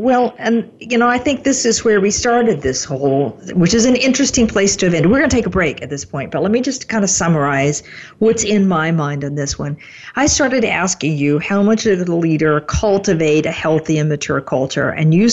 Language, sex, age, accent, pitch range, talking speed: English, female, 50-69, American, 155-205 Hz, 240 wpm